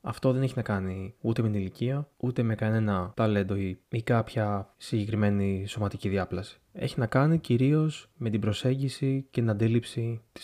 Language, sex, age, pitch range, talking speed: Greek, male, 20-39, 105-125 Hz, 165 wpm